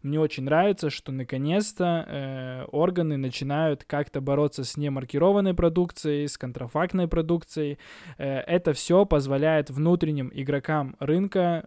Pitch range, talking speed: 135-170 Hz, 120 wpm